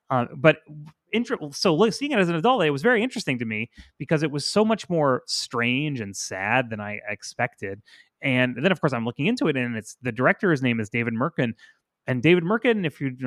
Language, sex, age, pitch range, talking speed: English, male, 30-49, 115-155 Hz, 215 wpm